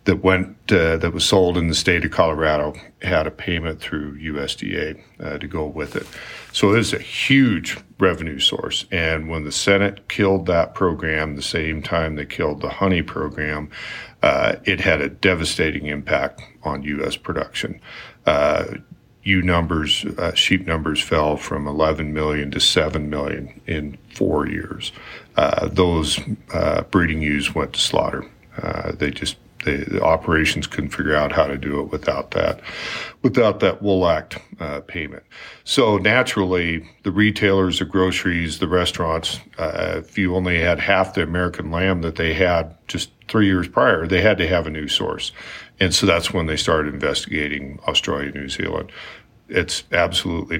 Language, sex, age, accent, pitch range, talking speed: English, male, 50-69, American, 75-95 Hz, 165 wpm